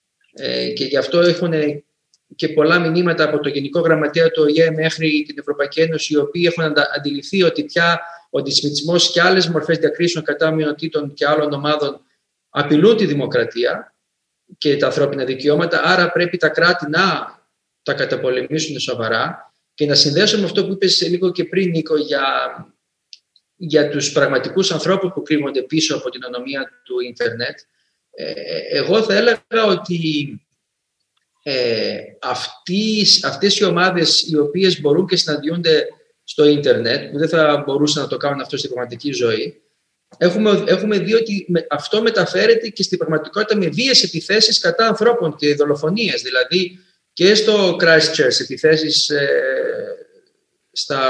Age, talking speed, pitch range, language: 40-59, 145 wpm, 150-195 Hz, Greek